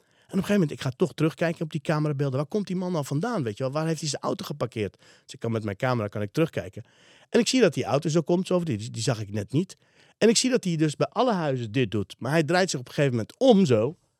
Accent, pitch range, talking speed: Dutch, 115-165 Hz, 305 wpm